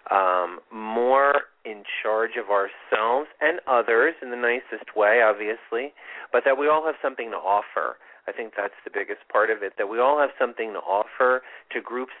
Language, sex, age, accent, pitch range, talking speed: English, male, 40-59, American, 105-150 Hz, 185 wpm